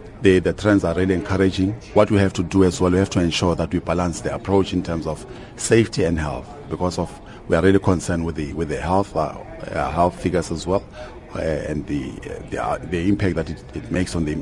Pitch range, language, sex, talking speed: 85-105 Hz, English, male, 240 wpm